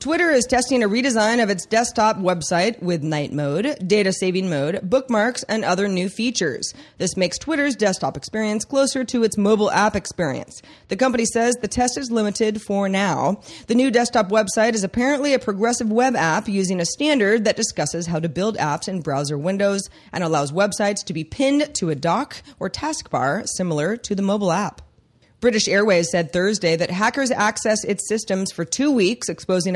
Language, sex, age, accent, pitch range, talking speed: English, female, 30-49, American, 175-225 Hz, 185 wpm